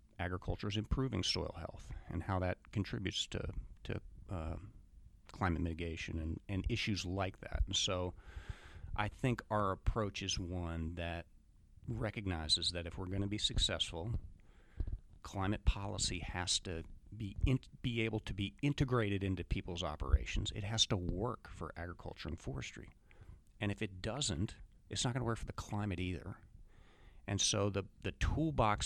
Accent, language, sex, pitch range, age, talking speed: American, English, male, 85-105 Hz, 40-59, 160 wpm